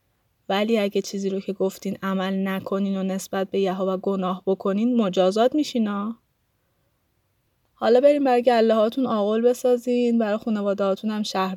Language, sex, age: Persian, female, 20-39